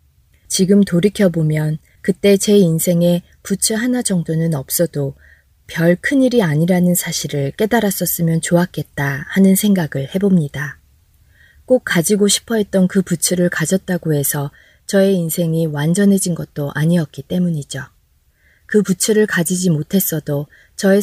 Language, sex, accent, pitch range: Korean, female, native, 145-195 Hz